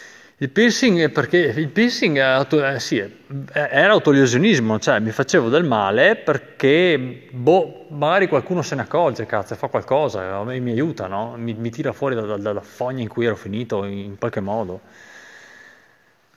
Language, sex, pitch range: Italian, male, 105-130 Hz